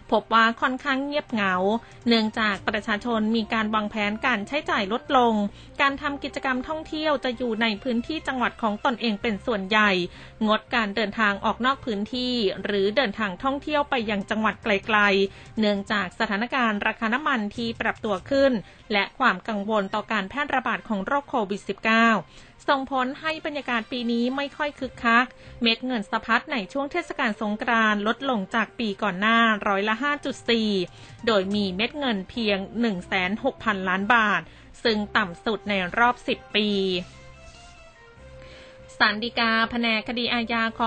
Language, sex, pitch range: Thai, female, 210-255 Hz